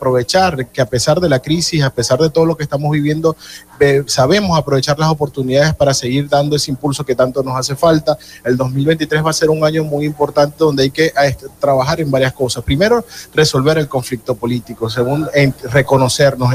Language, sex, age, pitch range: Spanish, male, 30-49, 135-160 Hz